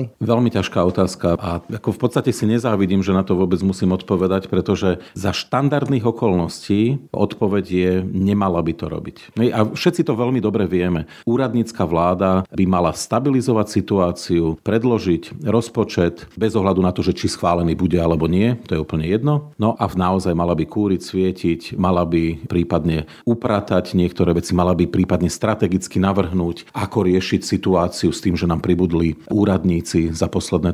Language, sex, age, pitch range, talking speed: Slovak, male, 40-59, 90-110 Hz, 160 wpm